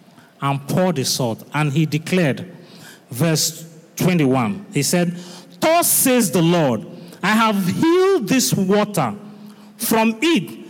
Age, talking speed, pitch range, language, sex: 40-59, 125 wpm, 140-210 Hz, English, male